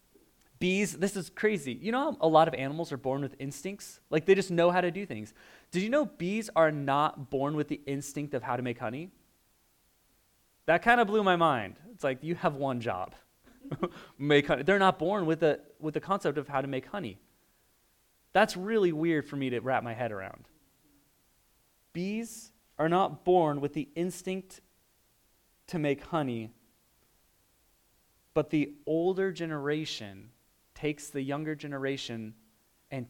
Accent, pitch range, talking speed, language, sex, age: American, 130-165 Hz, 170 wpm, English, male, 20-39